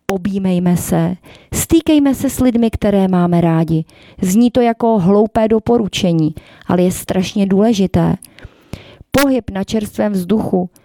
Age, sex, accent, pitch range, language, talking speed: 30-49, female, native, 180-225 Hz, Czech, 120 wpm